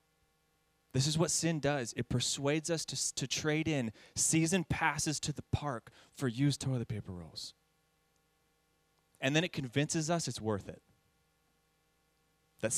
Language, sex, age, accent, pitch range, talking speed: English, male, 30-49, American, 120-160 Hz, 145 wpm